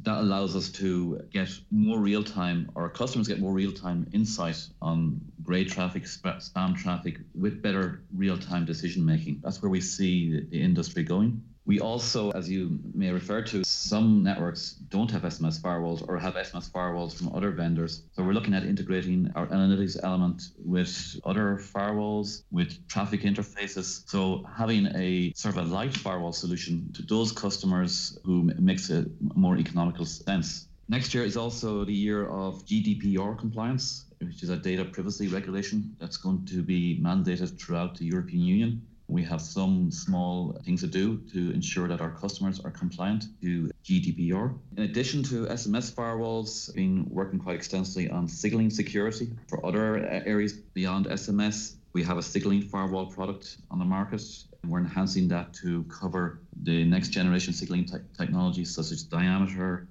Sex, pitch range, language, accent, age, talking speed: male, 90-110 Hz, English, Irish, 30-49, 165 wpm